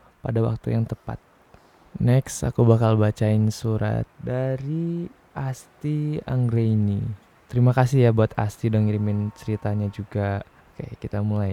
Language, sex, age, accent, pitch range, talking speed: Indonesian, male, 20-39, native, 105-120 Hz, 125 wpm